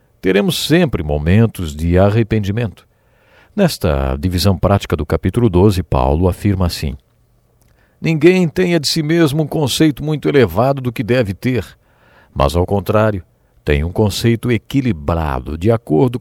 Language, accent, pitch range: English, Brazilian, 85-140 Hz